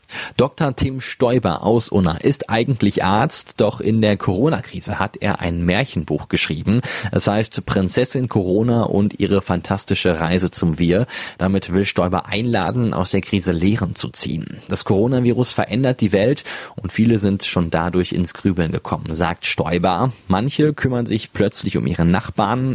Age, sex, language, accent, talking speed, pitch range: 30-49, male, German, German, 155 wpm, 95-120 Hz